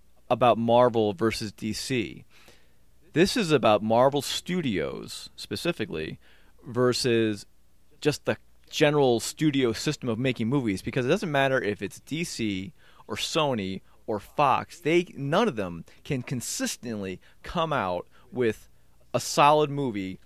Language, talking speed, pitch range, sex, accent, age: English, 125 wpm, 105-145 Hz, male, American, 30-49